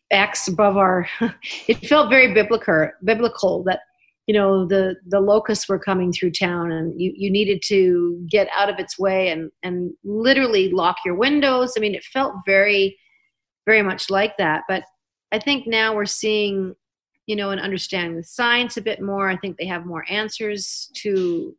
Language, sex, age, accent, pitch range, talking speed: English, female, 40-59, American, 190-225 Hz, 180 wpm